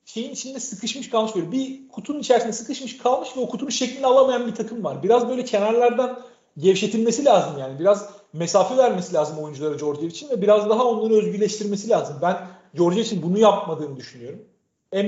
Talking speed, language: 175 wpm, Turkish